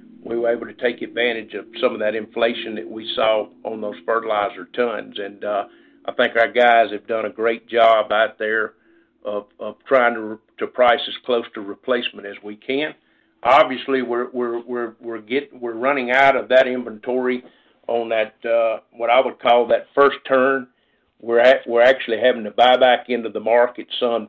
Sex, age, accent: male, 50-69, American